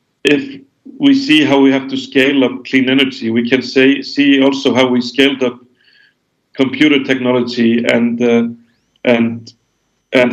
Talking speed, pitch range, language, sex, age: 150 wpm, 120-135 Hz, French, male, 50-69